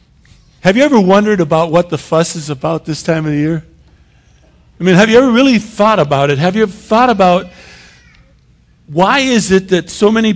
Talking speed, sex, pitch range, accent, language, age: 205 wpm, male, 160-200 Hz, American, English, 50-69